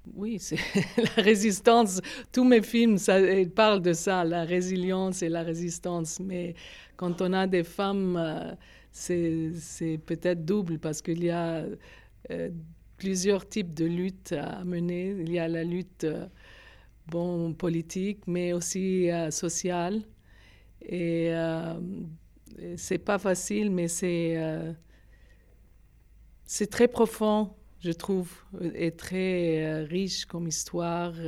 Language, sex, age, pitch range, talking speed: French, female, 50-69, 165-190 Hz, 130 wpm